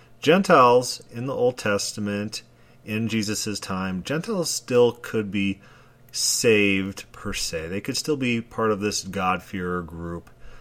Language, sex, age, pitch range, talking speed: English, male, 30-49, 95-120 Hz, 135 wpm